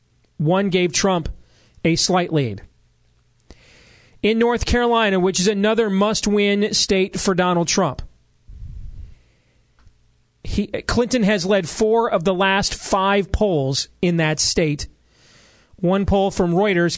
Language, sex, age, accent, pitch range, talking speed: English, male, 40-59, American, 165-200 Hz, 120 wpm